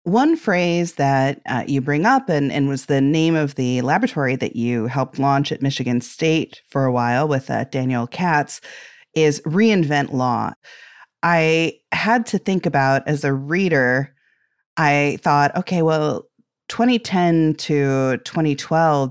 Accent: American